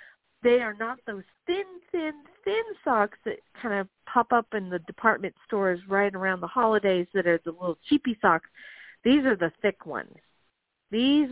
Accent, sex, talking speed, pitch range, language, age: American, female, 175 wpm, 185-265 Hz, English, 50-69